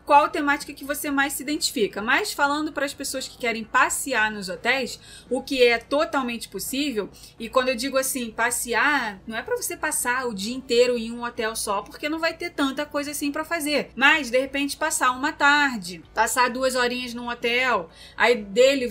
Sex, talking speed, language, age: female, 195 wpm, Portuguese, 20-39